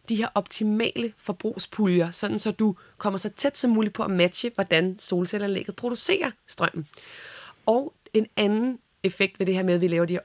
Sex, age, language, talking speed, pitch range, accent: female, 30-49, Danish, 185 wpm, 175-210 Hz, native